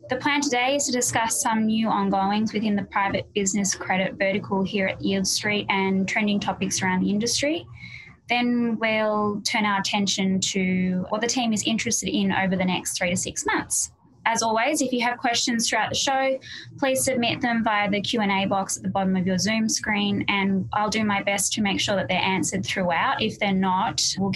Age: 10-29